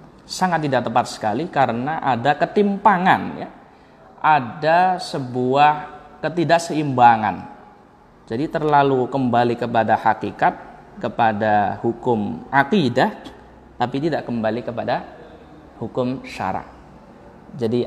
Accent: native